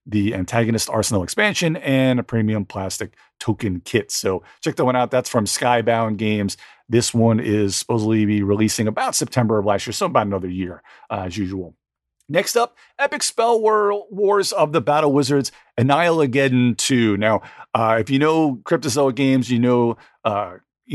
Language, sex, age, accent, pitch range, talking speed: English, male, 40-59, American, 110-130 Hz, 170 wpm